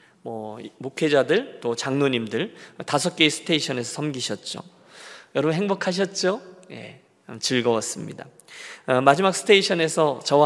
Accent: native